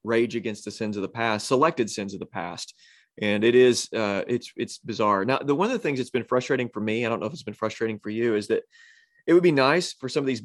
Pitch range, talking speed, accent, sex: 110-125 Hz, 280 wpm, American, male